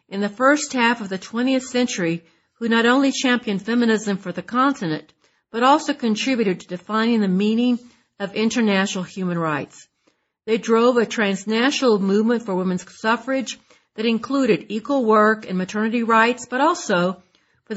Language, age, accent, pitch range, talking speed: English, 50-69, American, 190-245 Hz, 150 wpm